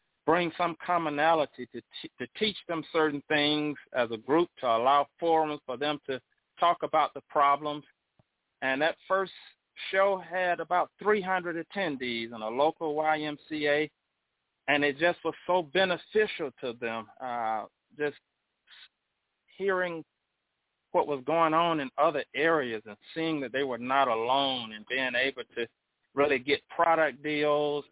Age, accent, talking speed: 40-59, American, 145 wpm